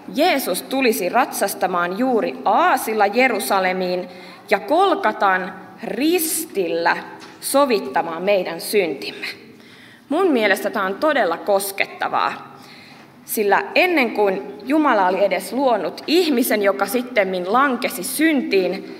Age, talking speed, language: 20-39, 95 wpm, Finnish